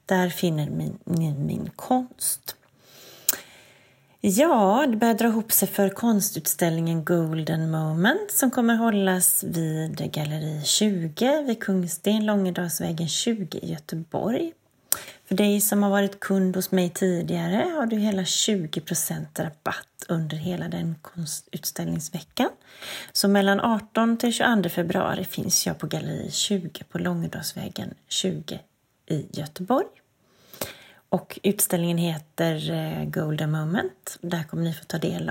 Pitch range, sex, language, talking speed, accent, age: 165-200 Hz, female, Swedish, 120 wpm, native, 30-49